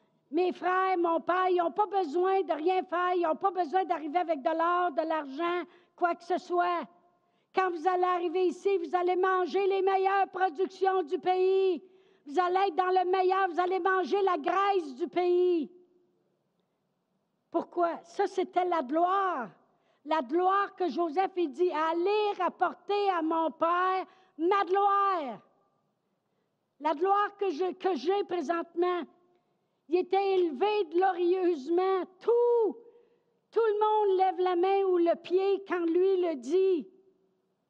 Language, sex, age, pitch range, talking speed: French, female, 60-79, 345-390 Hz, 150 wpm